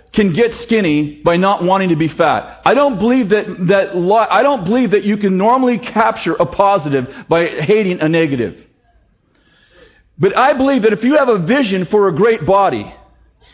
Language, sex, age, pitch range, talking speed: English, male, 40-59, 195-260 Hz, 180 wpm